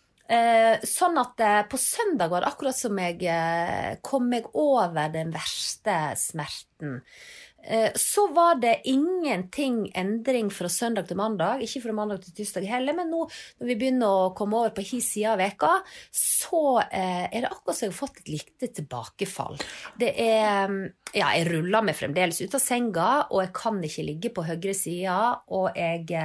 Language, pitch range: English, 175-245 Hz